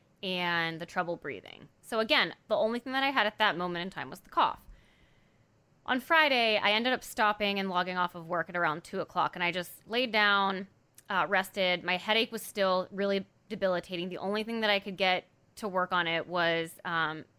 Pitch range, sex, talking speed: 180-230 Hz, female, 210 wpm